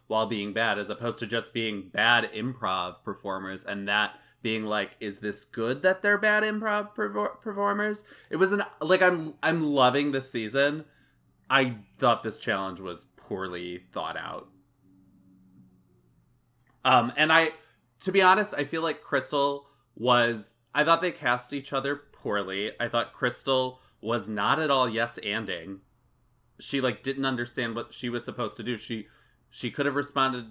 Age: 20-39